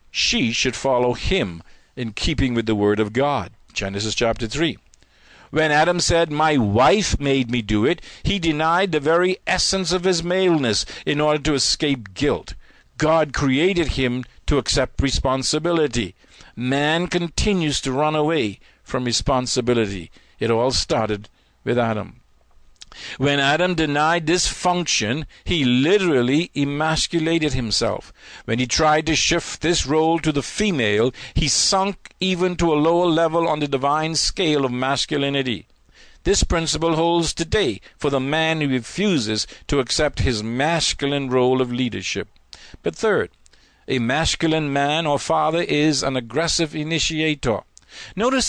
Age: 50-69